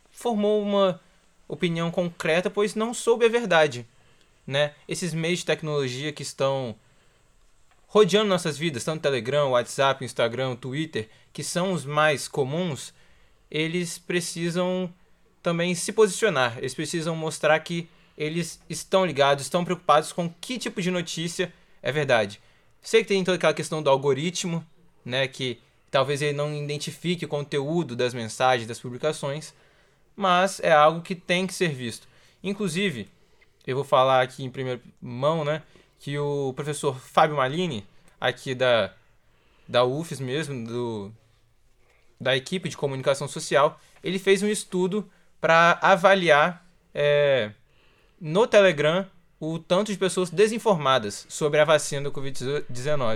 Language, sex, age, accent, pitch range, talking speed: Portuguese, male, 20-39, Brazilian, 135-180 Hz, 140 wpm